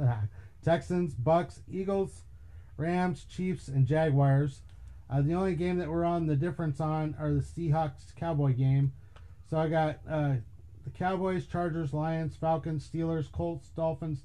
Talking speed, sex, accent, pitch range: 145 wpm, male, American, 130-165 Hz